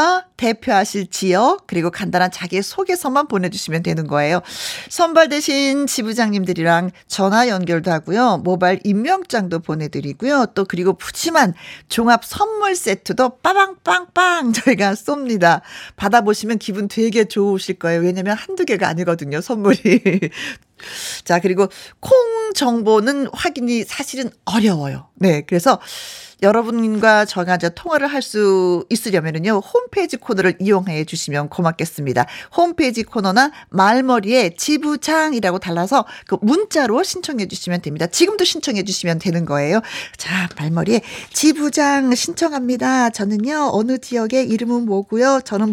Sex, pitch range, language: female, 185-280 Hz, Korean